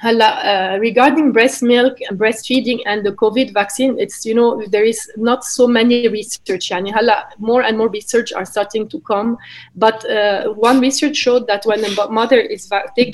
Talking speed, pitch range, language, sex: 185 wpm, 210-255 Hz, English, female